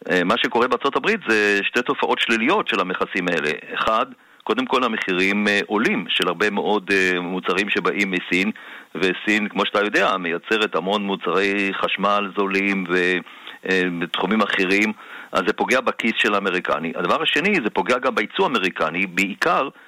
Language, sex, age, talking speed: Hebrew, male, 50-69, 145 wpm